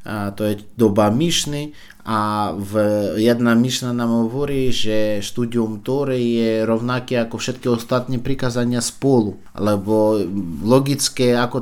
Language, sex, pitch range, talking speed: Slovak, male, 105-130 Hz, 120 wpm